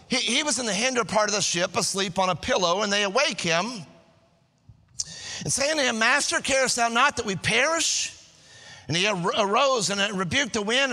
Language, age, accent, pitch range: English, 40-59, American, 200-285 Hz